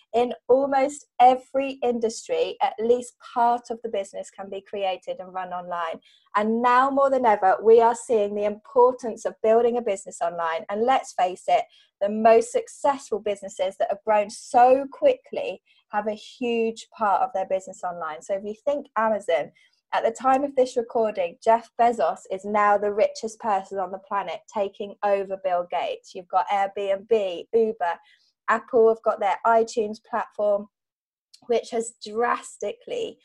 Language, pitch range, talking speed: English, 205-260 Hz, 160 wpm